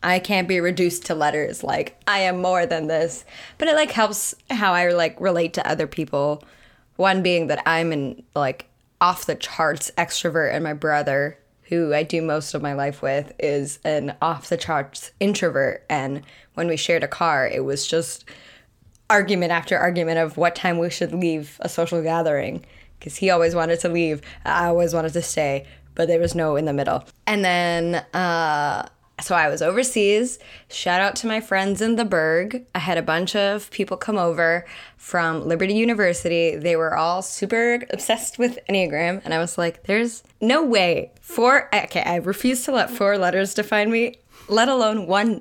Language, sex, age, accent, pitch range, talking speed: English, female, 10-29, American, 160-200 Hz, 180 wpm